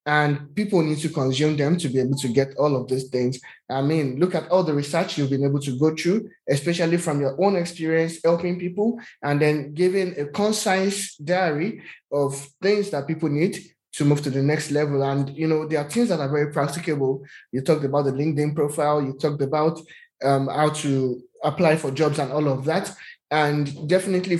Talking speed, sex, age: 205 wpm, male, 20-39